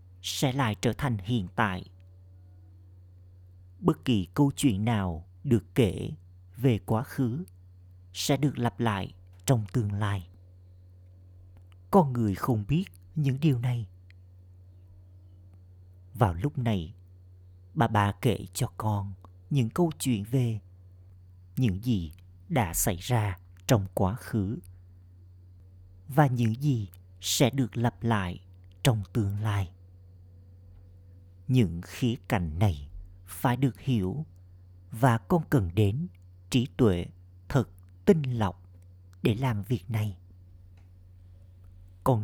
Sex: male